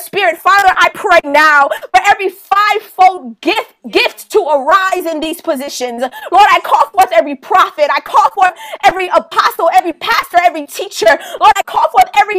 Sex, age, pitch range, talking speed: female, 20-39, 310-385 Hz, 170 wpm